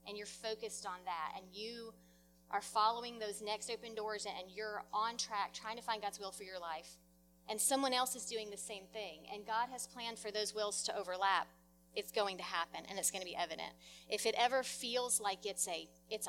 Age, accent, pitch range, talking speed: 30-49, American, 185-225 Hz, 215 wpm